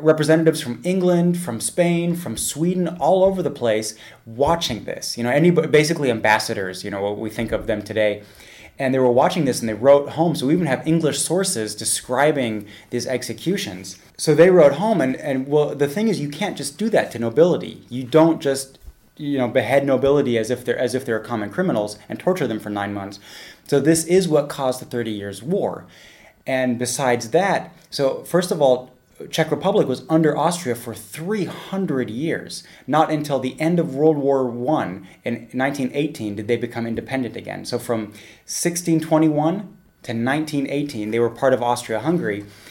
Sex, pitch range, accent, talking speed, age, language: male, 115-160 Hz, American, 185 wpm, 30-49, English